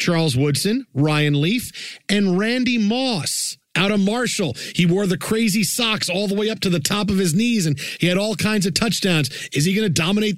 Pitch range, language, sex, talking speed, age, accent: 155-200 Hz, English, male, 215 wpm, 40-59, American